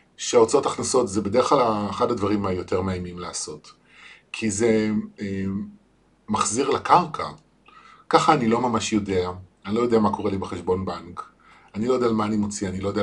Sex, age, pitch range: male, 40-59, 95-110 Hz